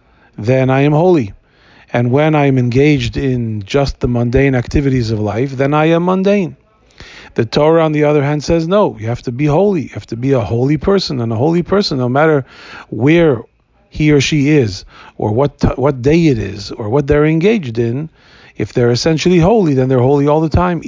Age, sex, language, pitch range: 40-59, male, English, 120-150 Hz